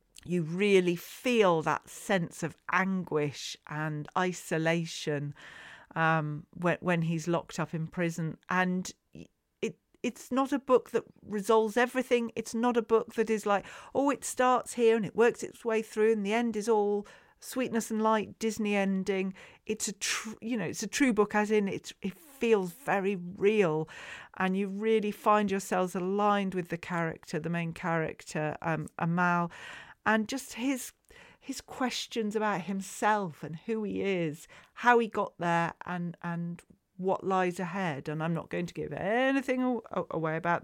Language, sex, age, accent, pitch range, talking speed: English, female, 40-59, British, 170-220 Hz, 160 wpm